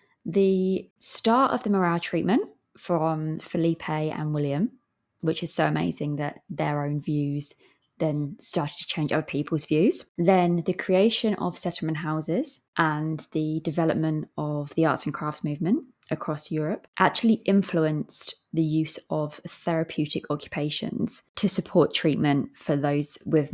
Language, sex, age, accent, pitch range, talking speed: English, female, 20-39, British, 155-195 Hz, 140 wpm